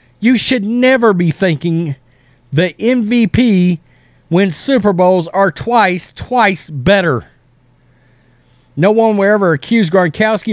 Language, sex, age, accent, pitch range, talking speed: English, male, 40-59, American, 135-195 Hz, 115 wpm